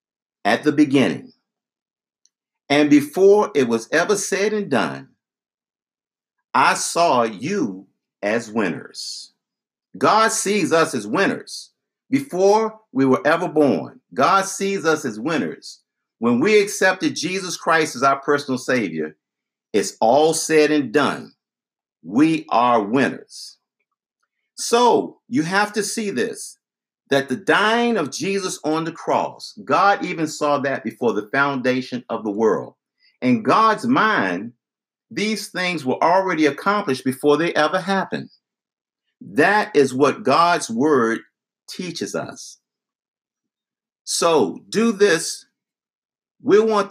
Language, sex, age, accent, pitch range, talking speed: English, male, 50-69, American, 140-210 Hz, 125 wpm